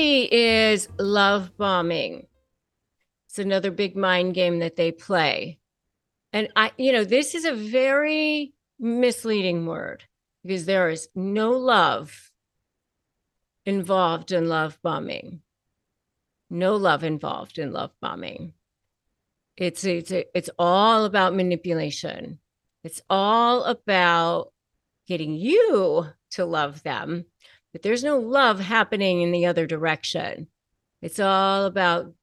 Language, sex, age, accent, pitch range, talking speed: English, female, 40-59, American, 170-220 Hz, 115 wpm